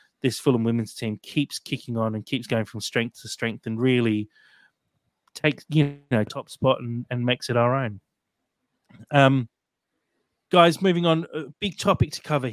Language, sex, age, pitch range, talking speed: English, male, 30-49, 110-135 Hz, 170 wpm